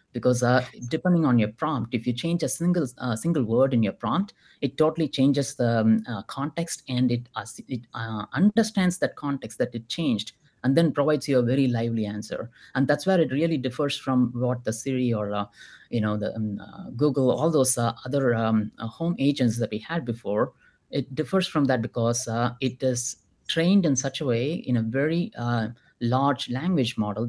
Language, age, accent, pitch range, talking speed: English, 30-49, Indian, 115-150 Hz, 205 wpm